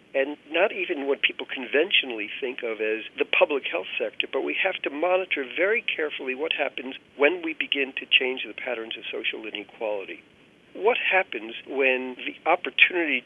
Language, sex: English, male